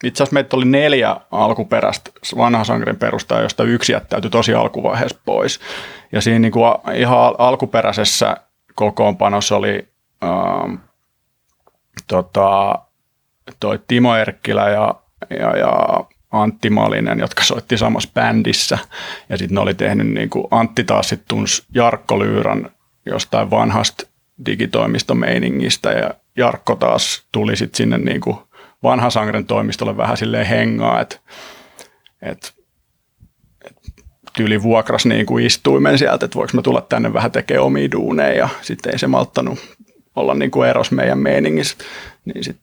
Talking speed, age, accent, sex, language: 120 wpm, 30-49, native, male, Finnish